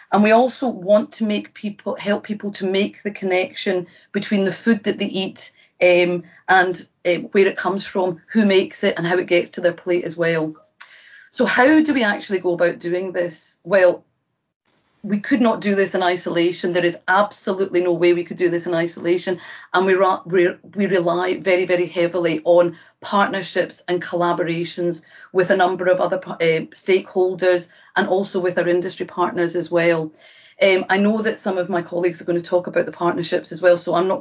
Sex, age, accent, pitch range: female, 30-49, British, 175-195 Hz